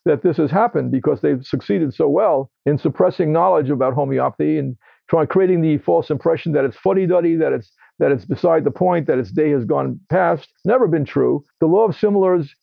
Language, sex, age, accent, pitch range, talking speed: English, male, 50-69, American, 150-180 Hz, 210 wpm